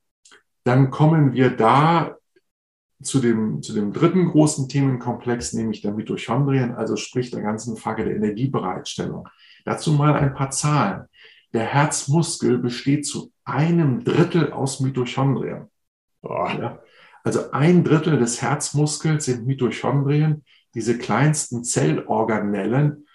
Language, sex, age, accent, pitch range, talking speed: German, male, 50-69, German, 120-145 Hz, 120 wpm